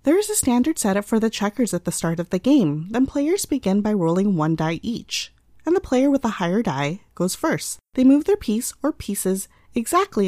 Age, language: 30-49, English